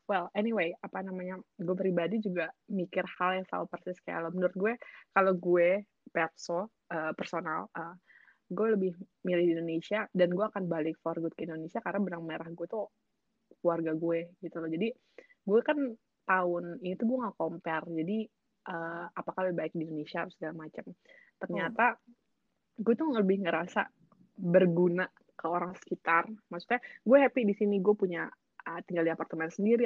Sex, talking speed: female, 165 wpm